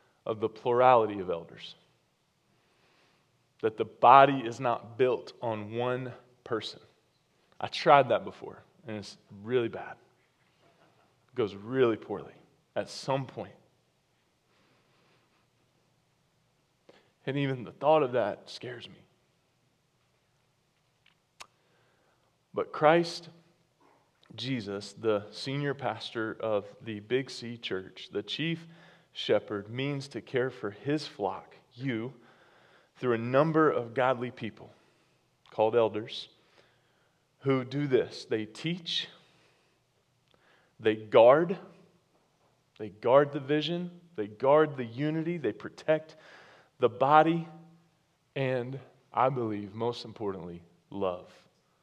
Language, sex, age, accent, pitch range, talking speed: English, male, 30-49, American, 110-150 Hz, 105 wpm